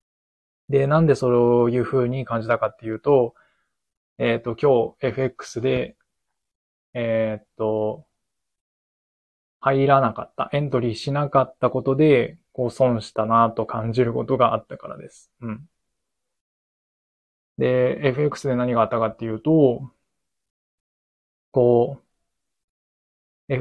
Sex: male